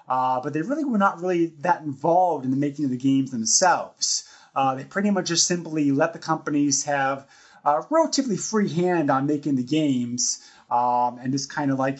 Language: English